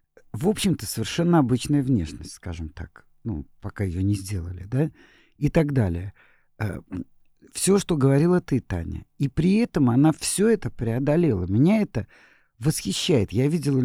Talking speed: 145 wpm